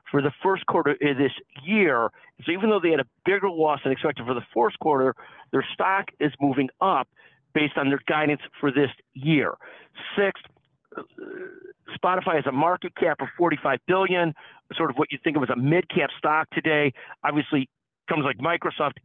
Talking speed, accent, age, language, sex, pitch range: 180 wpm, American, 50-69, English, male, 140-175 Hz